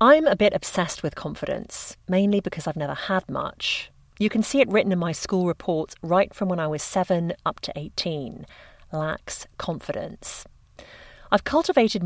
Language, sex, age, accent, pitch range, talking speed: English, female, 40-59, British, 155-210 Hz, 170 wpm